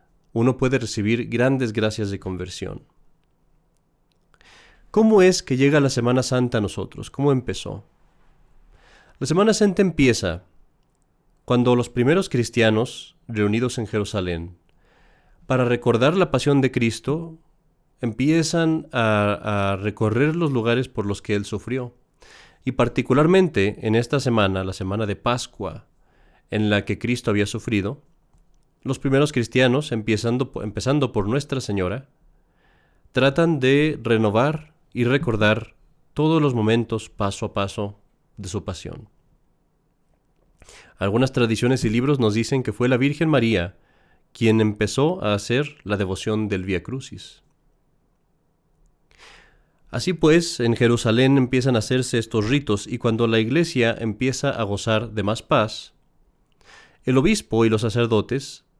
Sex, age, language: male, 40-59, Spanish